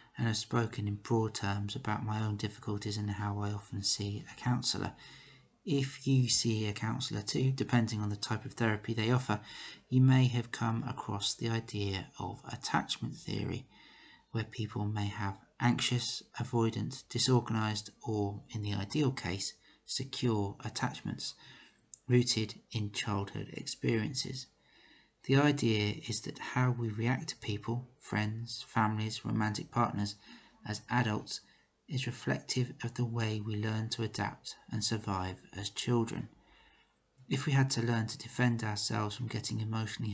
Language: English